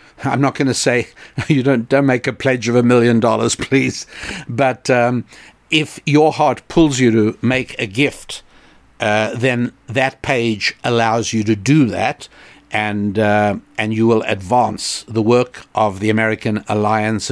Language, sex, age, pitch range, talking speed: English, male, 60-79, 110-135 Hz, 165 wpm